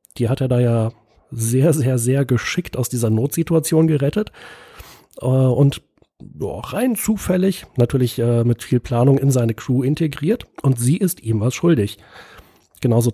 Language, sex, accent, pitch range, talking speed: German, male, German, 120-140 Hz, 155 wpm